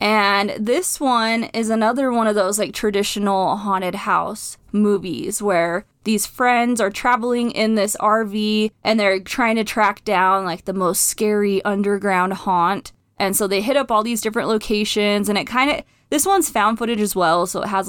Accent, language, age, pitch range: American, English, 20-39, 195-230 Hz